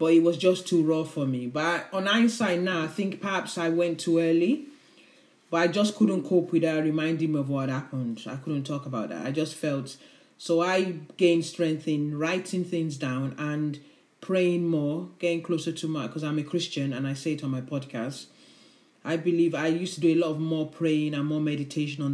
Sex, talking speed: male, 215 wpm